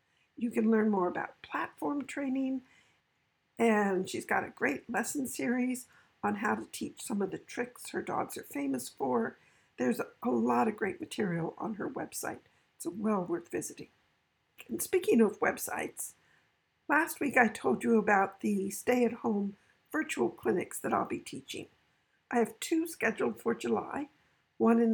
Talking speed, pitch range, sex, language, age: 160 wpm, 195-280 Hz, female, English, 60-79